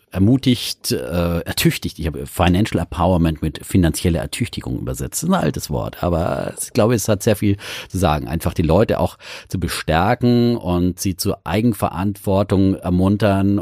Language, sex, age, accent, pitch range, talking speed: German, male, 40-59, German, 90-110 Hz, 150 wpm